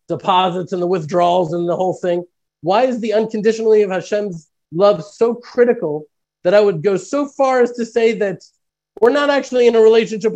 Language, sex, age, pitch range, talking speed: English, male, 30-49, 185-225 Hz, 190 wpm